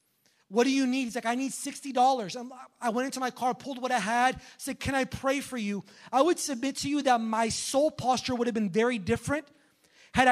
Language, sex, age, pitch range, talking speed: English, male, 30-49, 235-285 Hz, 225 wpm